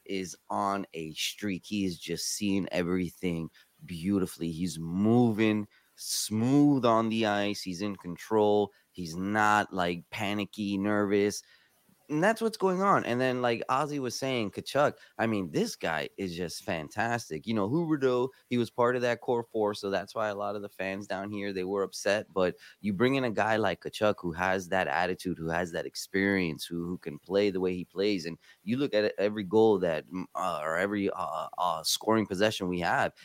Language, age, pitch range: English, 20-39, 95-115 Hz